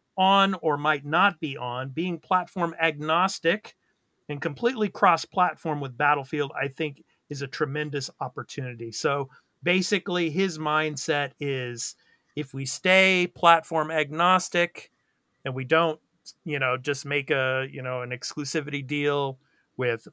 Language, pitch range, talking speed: English, 135-165 Hz, 130 wpm